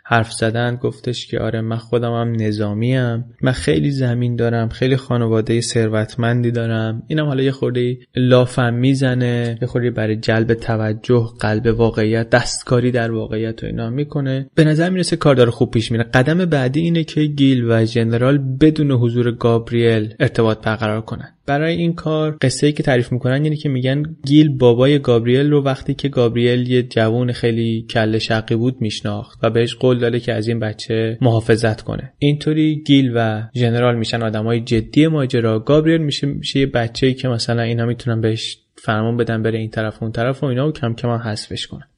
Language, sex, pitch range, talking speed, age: Persian, male, 115-135 Hz, 180 wpm, 20-39